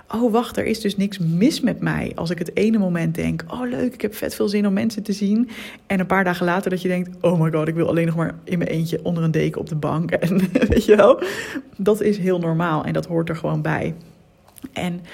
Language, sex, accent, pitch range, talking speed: Dutch, female, Dutch, 165-225 Hz, 260 wpm